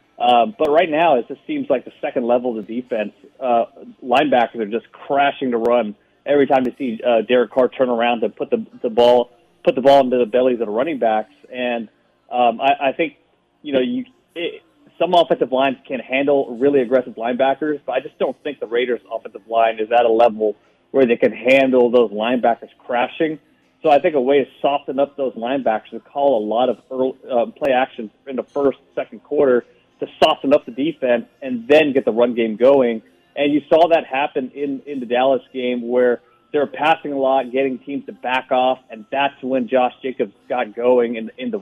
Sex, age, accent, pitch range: male, 30-49, American, 120-140 Hz